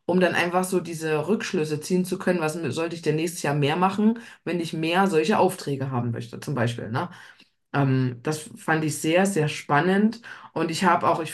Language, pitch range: German, 150-195 Hz